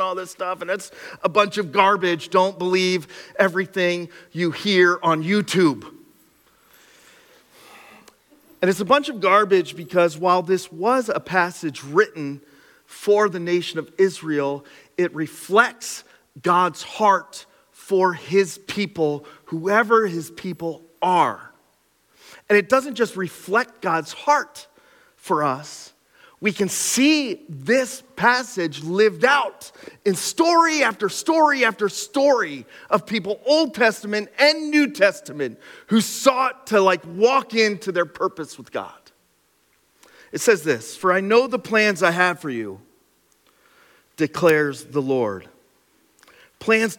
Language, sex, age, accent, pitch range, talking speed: English, male, 30-49, American, 175-240 Hz, 130 wpm